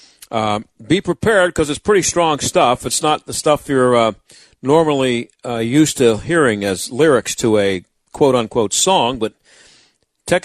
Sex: male